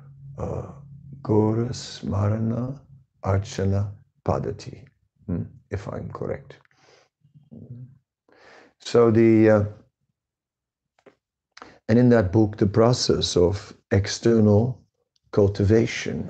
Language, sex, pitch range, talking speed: English, male, 105-135 Hz, 70 wpm